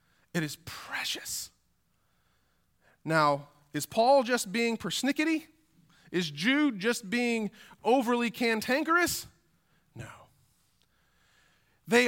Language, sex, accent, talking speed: English, male, American, 85 wpm